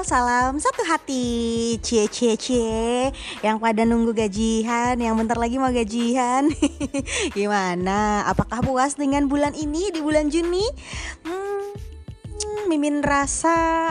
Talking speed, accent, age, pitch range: 115 wpm, native, 20-39, 220-300 Hz